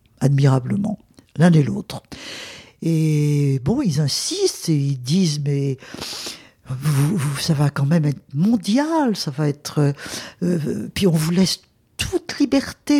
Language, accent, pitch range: English, French, 155-235 Hz